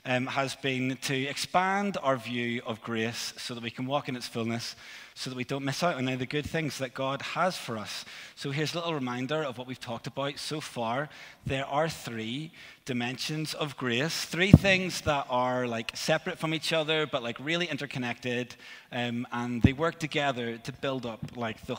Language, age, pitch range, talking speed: English, 30-49, 120-150 Hz, 205 wpm